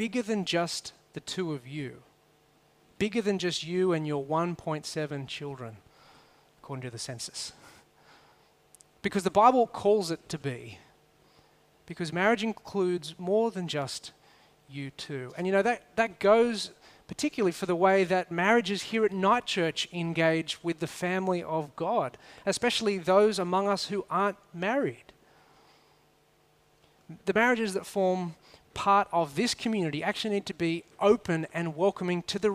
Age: 30-49